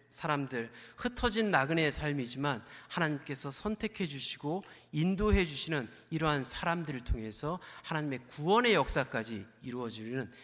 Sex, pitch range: male, 120-165 Hz